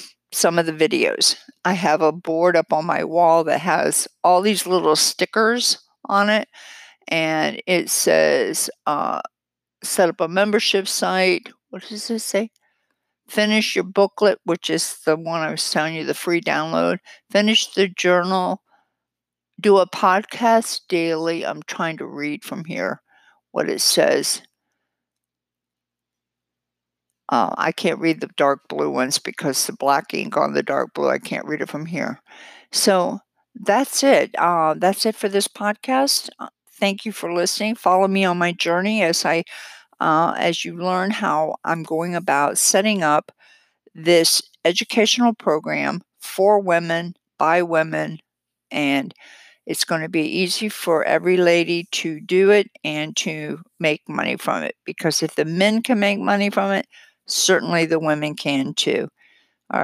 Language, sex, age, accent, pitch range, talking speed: English, female, 60-79, American, 155-205 Hz, 155 wpm